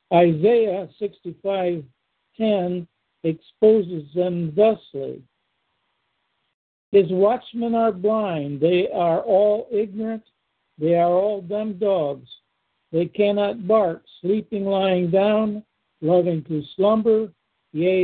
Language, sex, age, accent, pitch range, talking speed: English, male, 60-79, American, 170-205 Hz, 95 wpm